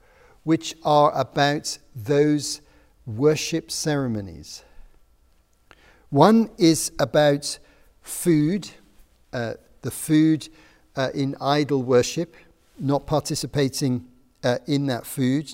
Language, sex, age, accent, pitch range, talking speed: English, male, 50-69, British, 130-160 Hz, 90 wpm